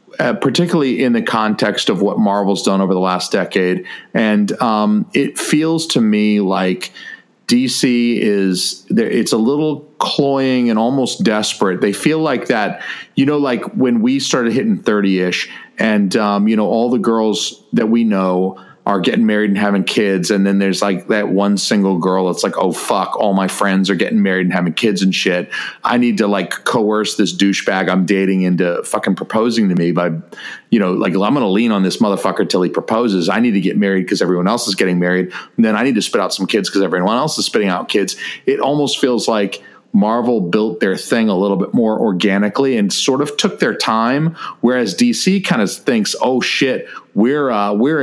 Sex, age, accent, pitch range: male, 40-59, American, 95-130 Hz